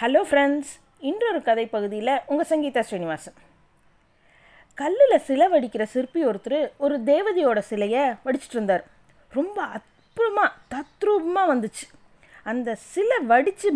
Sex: female